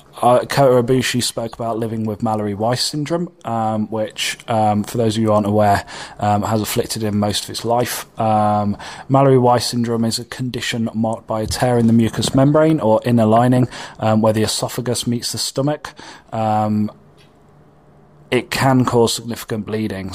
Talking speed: 170 wpm